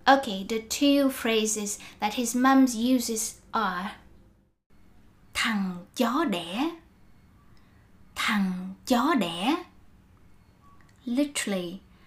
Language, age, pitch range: Vietnamese, 20-39, 190-250 Hz